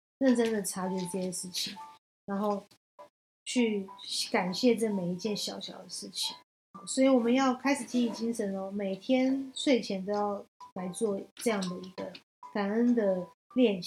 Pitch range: 195-255 Hz